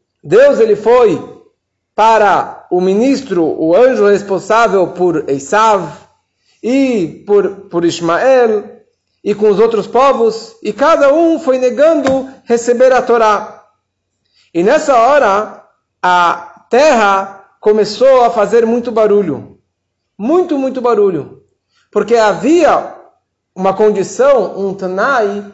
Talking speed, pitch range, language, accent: 110 wpm, 195-265 Hz, Portuguese, Brazilian